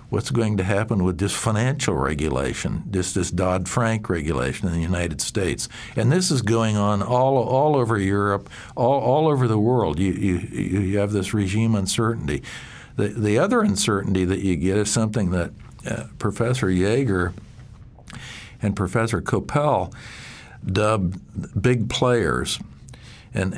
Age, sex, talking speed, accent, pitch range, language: 60-79, male, 145 wpm, American, 90-115 Hz, English